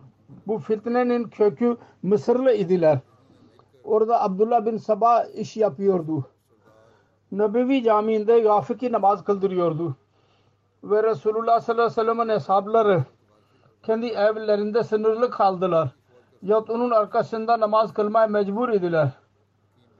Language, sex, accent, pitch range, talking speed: Turkish, male, Indian, 170-230 Hz, 100 wpm